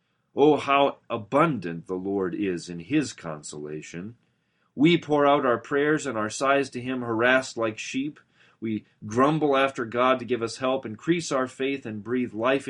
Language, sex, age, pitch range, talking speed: English, male, 40-59, 90-130 Hz, 170 wpm